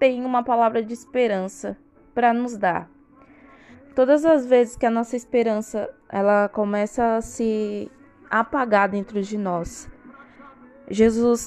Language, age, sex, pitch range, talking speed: Portuguese, 20-39, female, 215-250 Hz, 125 wpm